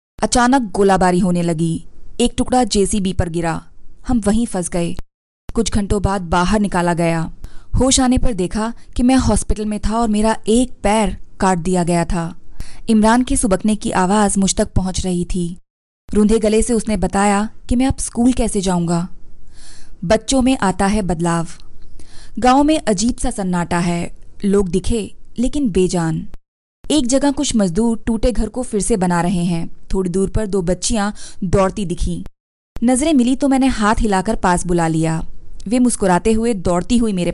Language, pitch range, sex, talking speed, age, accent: Hindi, 180-235 Hz, female, 170 wpm, 20-39, native